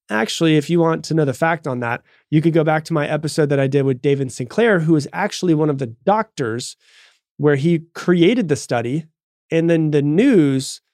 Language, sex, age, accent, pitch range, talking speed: English, male, 30-49, American, 135-170 Hz, 215 wpm